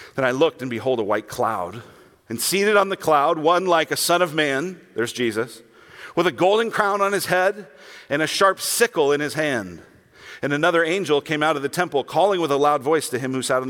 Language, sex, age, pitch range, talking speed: English, male, 40-59, 130-185 Hz, 230 wpm